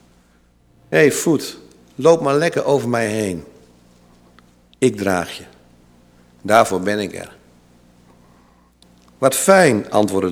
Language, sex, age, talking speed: Dutch, male, 50-69, 110 wpm